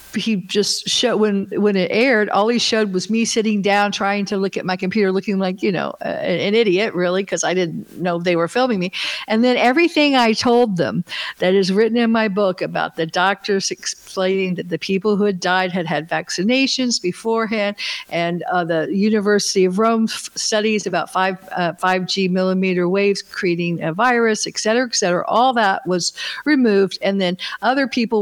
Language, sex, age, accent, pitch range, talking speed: English, female, 60-79, American, 180-225 Hz, 195 wpm